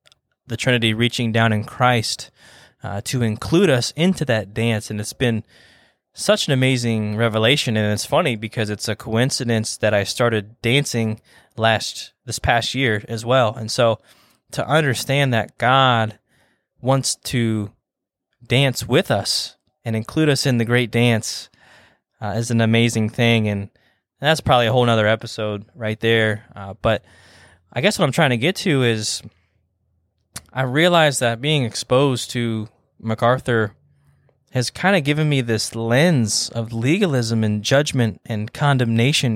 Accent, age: American, 20-39